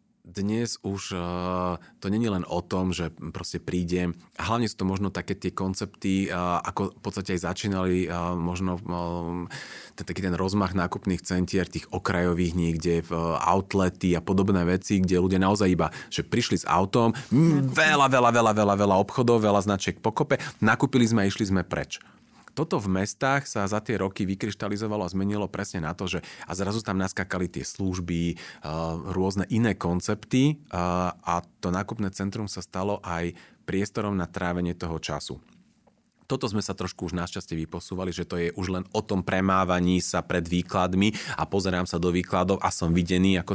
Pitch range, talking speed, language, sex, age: 90-105 Hz, 170 wpm, Slovak, male, 30-49